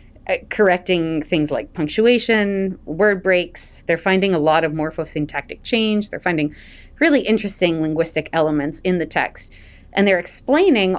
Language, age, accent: English, 30-49, American